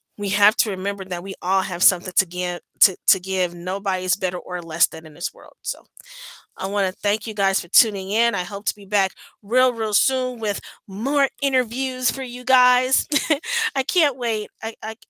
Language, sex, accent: English, female, American